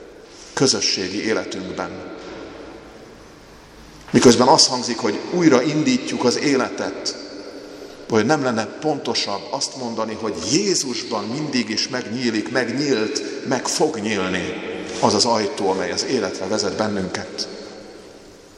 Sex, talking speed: male, 105 wpm